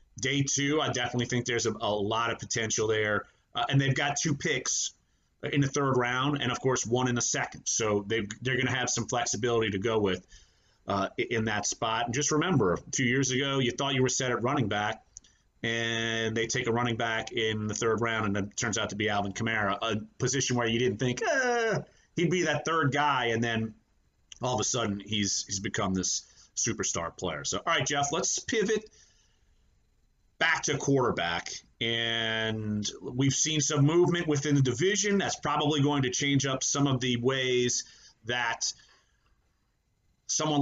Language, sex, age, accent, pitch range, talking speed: English, male, 30-49, American, 110-140 Hz, 190 wpm